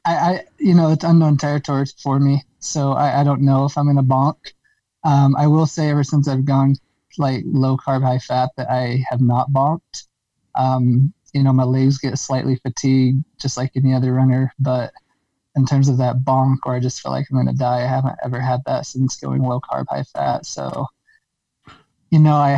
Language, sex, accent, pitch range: English, male, American, 130-145 Hz